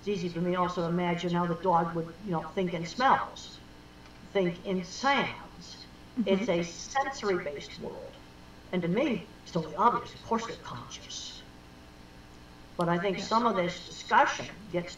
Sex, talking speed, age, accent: female, 170 wpm, 50-69, American